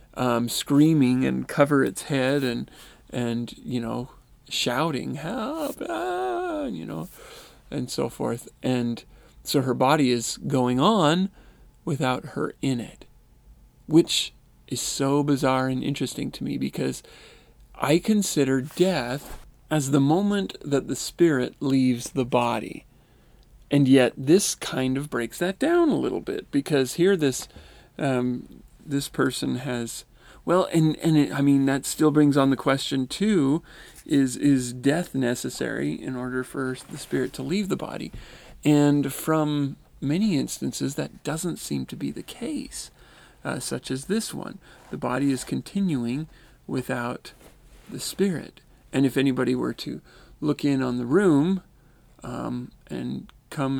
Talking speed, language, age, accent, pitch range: 145 wpm, English, 40-59, American, 125-160 Hz